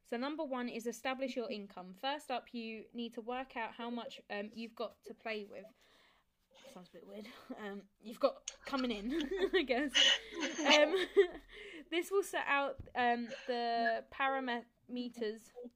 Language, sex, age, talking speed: English, female, 10-29, 160 wpm